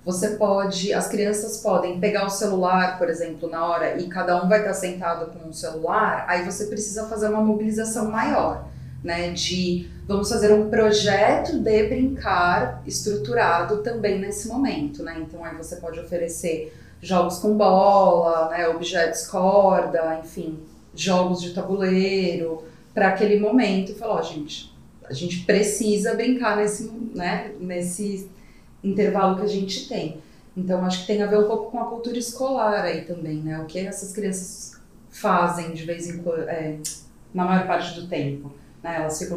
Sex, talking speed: female, 165 wpm